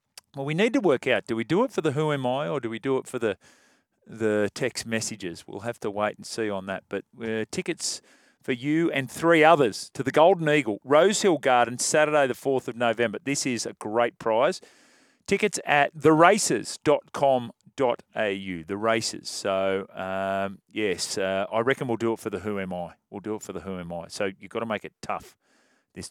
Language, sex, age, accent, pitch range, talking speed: English, male, 40-59, Australian, 100-130 Hz, 215 wpm